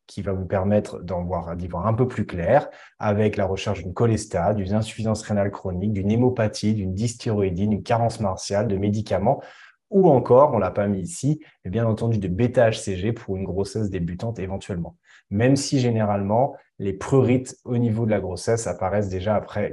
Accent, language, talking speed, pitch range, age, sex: French, French, 180 wpm, 95-115 Hz, 20-39, male